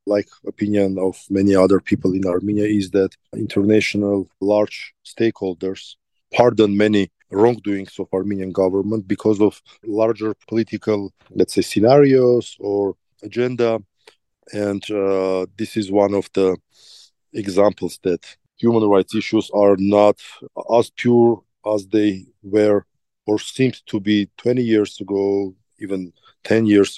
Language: English